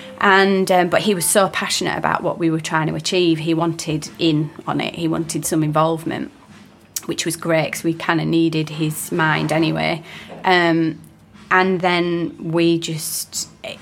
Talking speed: 170 wpm